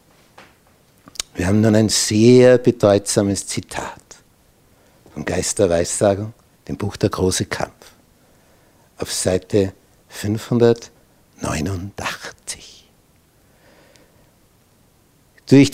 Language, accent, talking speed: German, Austrian, 75 wpm